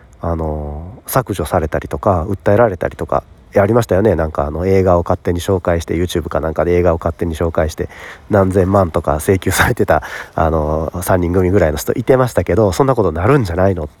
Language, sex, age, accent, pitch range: Japanese, male, 40-59, native, 80-105 Hz